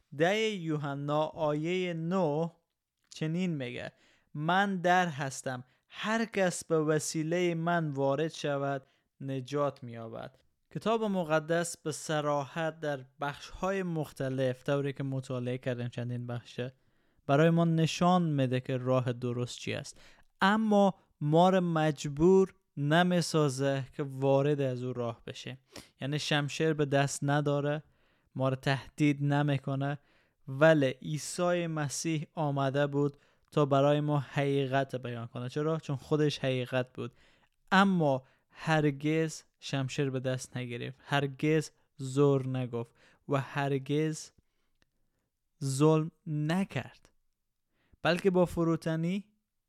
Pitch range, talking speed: 135-160 Hz, 105 wpm